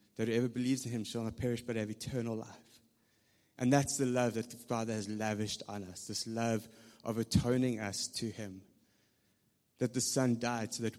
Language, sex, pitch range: English, male, 110-125 Hz